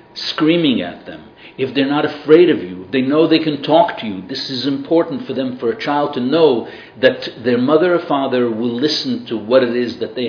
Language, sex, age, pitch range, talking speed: English, male, 50-69, 115-155 Hz, 225 wpm